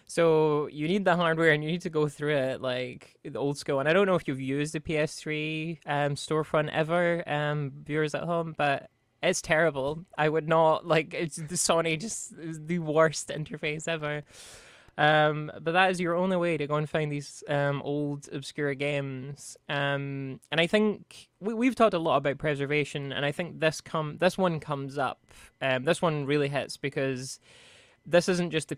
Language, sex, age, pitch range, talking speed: English, male, 20-39, 135-165 Hz, 195 wpm